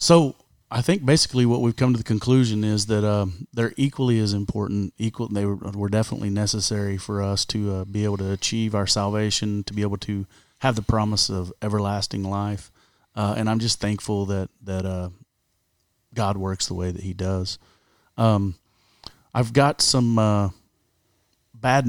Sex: male